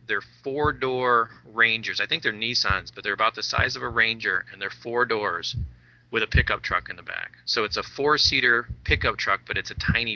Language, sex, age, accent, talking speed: English, male, 40-59, American, 215 wpm